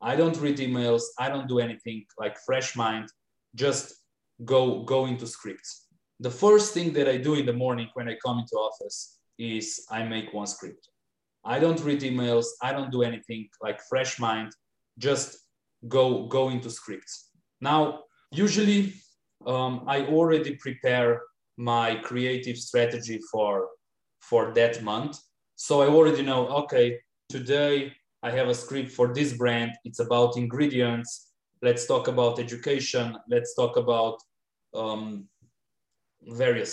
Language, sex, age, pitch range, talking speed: English, male, 20-39, 120-145 Hz, 145 wpm